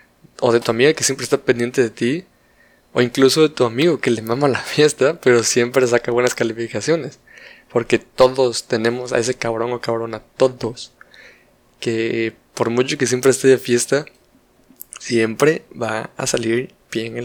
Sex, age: male, 20-39